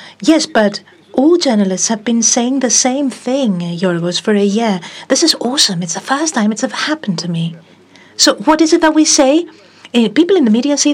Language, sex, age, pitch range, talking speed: Greek, female, 40-59, 175-250 Hz, 205 wpm